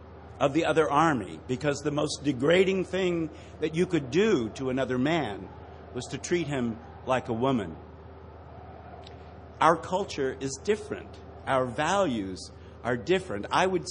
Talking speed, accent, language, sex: 140 wpm, American, English, male